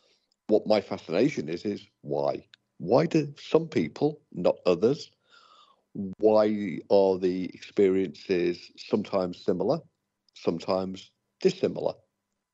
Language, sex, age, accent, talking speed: English, male, 50-69, British, 95 wpm